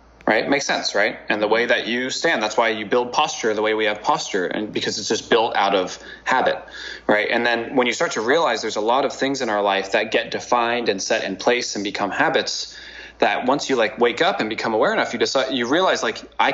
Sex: male